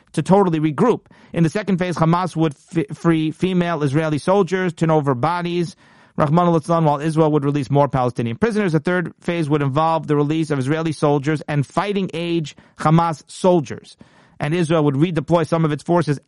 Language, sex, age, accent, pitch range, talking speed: English, male, 40-59, American, 140-165 Hz, 175 wpm